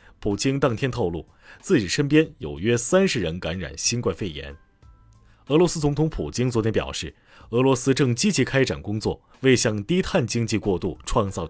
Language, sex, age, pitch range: Chinese, male, 30-49, 105-145 Hz